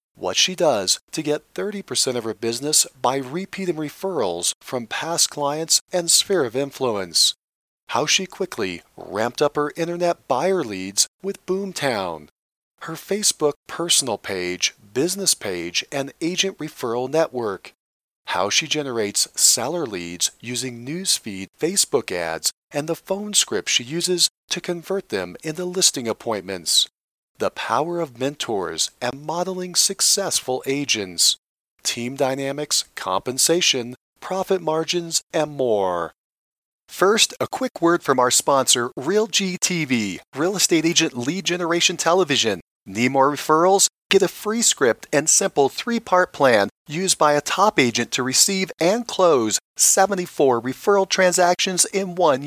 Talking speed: 130 wpm